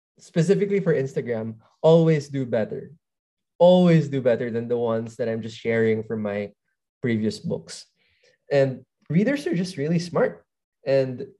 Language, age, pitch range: English, 20-39, 115-145 Hz